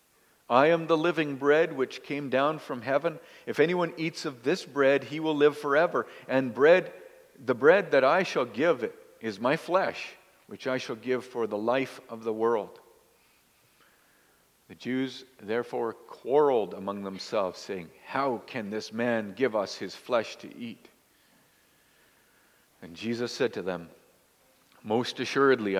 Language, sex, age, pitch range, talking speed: English, male, 50-69, 120-155 Hz, 155 wpm